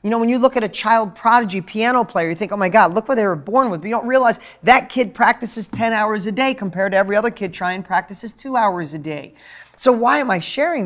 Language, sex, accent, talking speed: English, male, American, 270 wpm